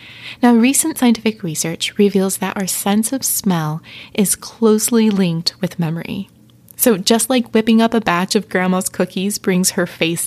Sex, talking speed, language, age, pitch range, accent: female, 165 wpm, English, 20-39, 185-225 Hz, American